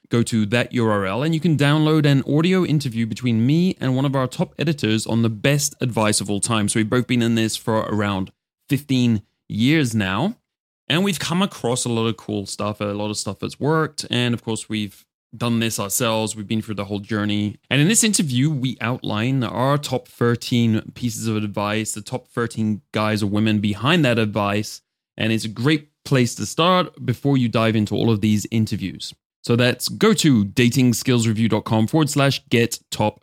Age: 20-39